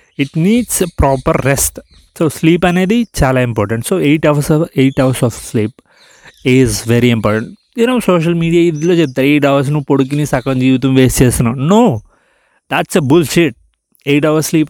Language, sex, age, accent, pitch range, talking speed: Telugu, male, 30-49, native, 115-160 Hz, 190 wpm